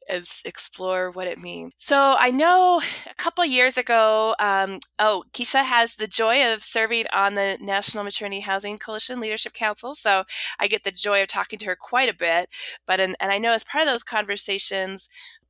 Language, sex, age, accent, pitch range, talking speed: English, female, 20-39, American, 180-225 Hz, 200 wpm